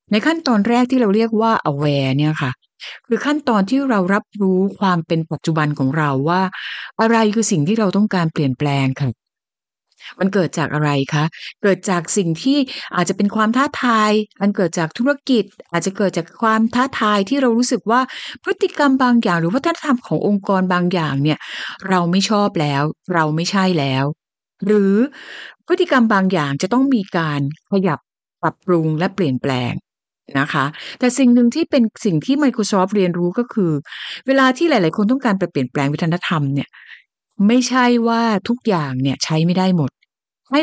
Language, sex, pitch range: Thai, female, 160-230 Hz